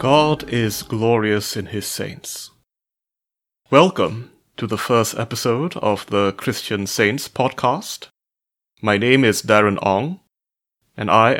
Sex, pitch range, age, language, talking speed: male, 105-130 Hz, 30-49, English, 120 wpm